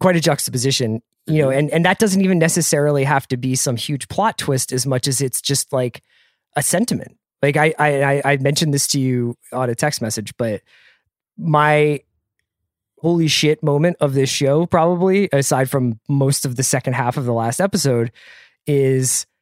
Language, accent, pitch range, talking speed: English, American, 120-150 Hz, 180 wpm